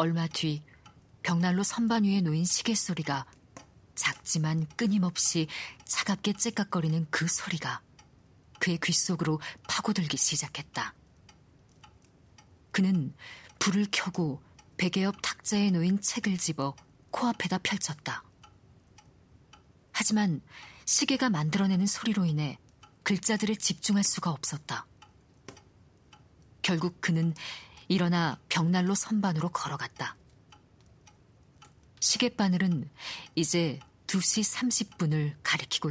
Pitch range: 140-195 Hz